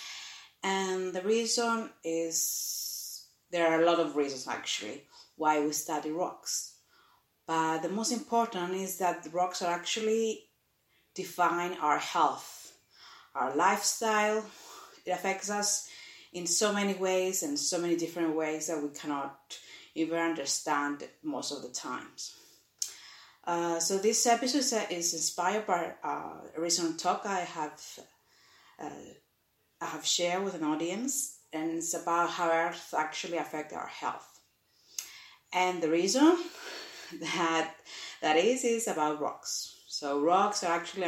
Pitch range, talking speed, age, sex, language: 155-190 Hz, 135 wpm, 30-49, female, English